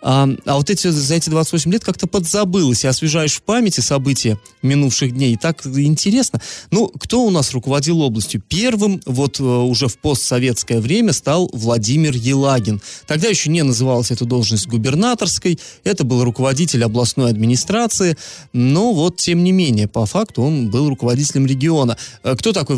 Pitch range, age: 120-170 Hz, 30-49